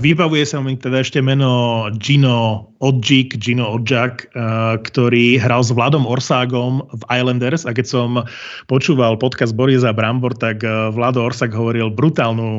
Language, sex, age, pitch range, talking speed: Slovak, male, 30-49, 115-135 Hz, 145 wpm